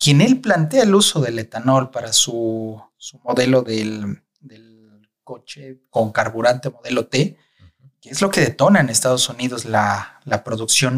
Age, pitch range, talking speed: 30-49, 115-145 Hz, 160 wpm